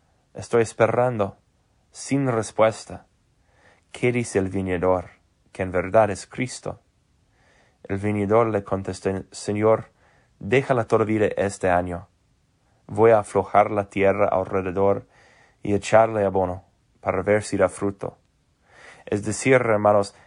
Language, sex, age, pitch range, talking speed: Spanish, male, 20-39, 95-110 Hz, 115 wpm